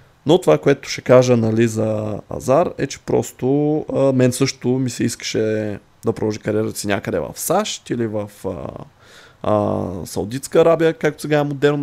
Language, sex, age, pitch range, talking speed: Bulgarian, male, 20-39, 110-135 Hz, 150 wpm